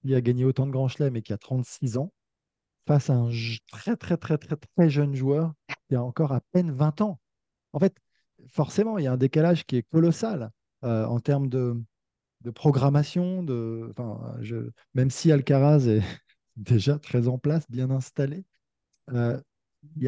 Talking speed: 190 wpm